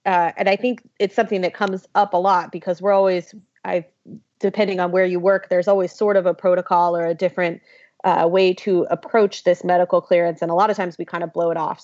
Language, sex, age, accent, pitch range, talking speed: English, female, 30-49, American, 170-195 Hz, 240 wpm